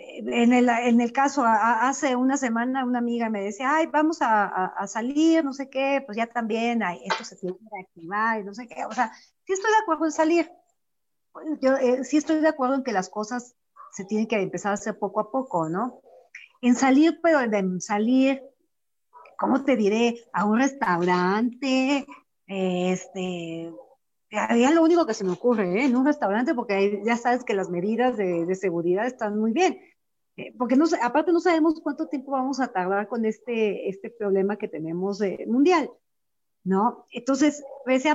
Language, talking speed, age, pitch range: Spanish, 185 wpm, 50-69, 205-285 Hz